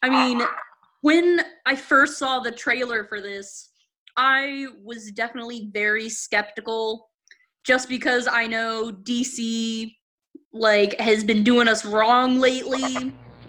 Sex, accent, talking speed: female, American, 120 wpm